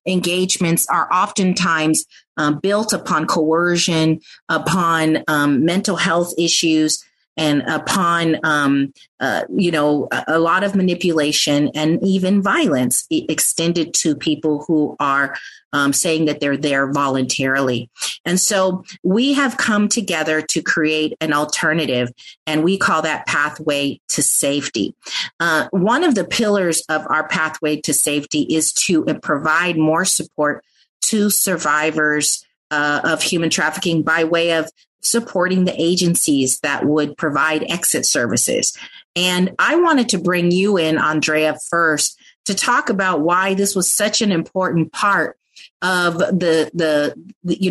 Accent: American